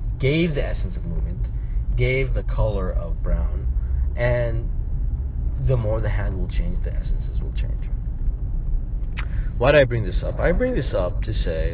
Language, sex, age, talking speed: English, male, 40-59, 170 wpm